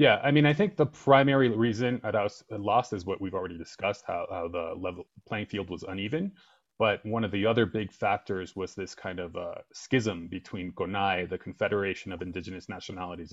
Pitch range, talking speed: 95-110 Hz, 190 wpm